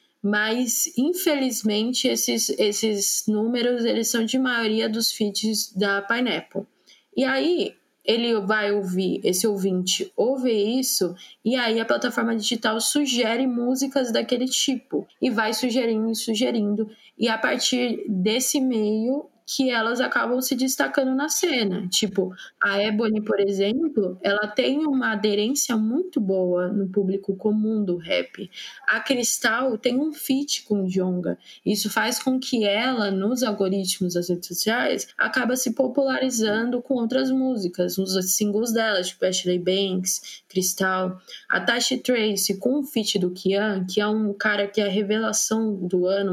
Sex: female